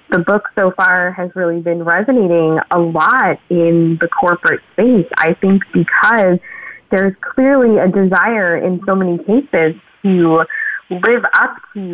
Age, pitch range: 20-39, 170-200 Hz